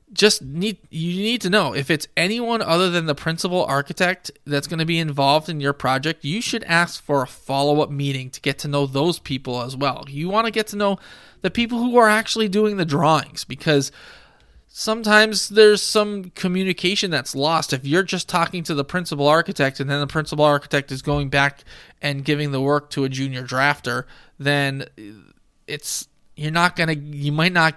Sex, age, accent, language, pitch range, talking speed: male, 20-39, American, English, 140-180 Hz, 195 wpm